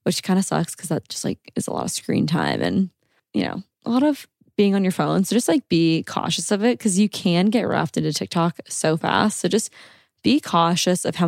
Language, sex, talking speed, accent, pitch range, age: English, female, 245 wpm, American, 165-210 Hz, 20-39